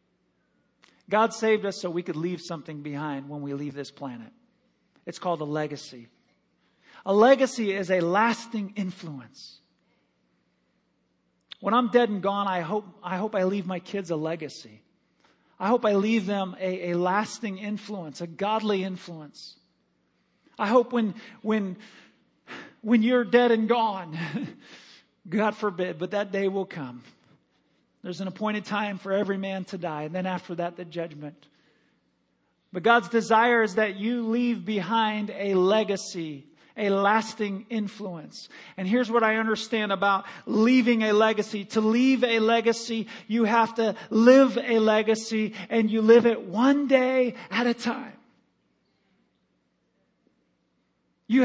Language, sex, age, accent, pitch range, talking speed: English, male, 40-59, American, 185-230 Hz, 145 wpm